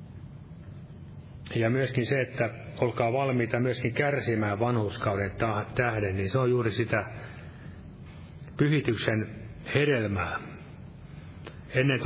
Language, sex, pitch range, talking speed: Finnish, male, 110-130 Hz, 90 wpm